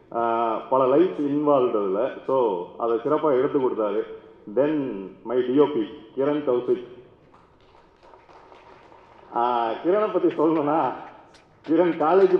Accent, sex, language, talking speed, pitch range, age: native, male, Tamil, 90 wpm, 135-190 Hz, 40-59